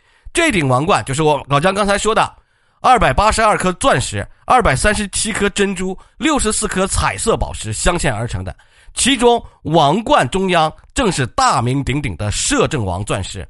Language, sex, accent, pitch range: Chinese, male, native, 115-190 Hz